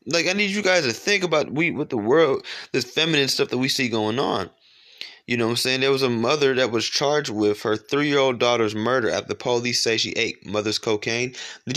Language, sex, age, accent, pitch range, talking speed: English, male, 20-39, American, 110-155 Hz, 235 wpm